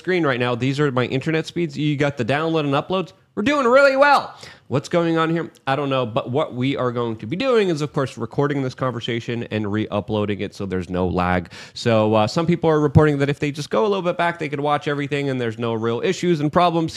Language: English